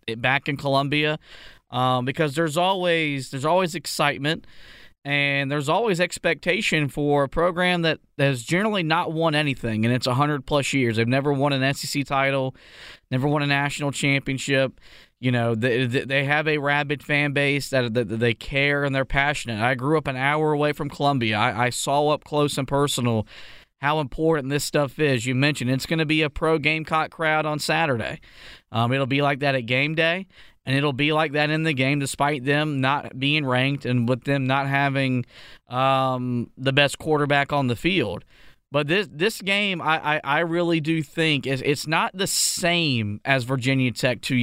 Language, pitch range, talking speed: English, 130-155 Hz, 190 wpm